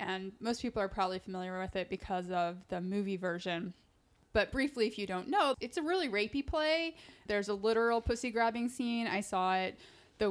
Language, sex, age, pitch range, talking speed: English, female, 20-39, 190-225 Hz, 200 wpm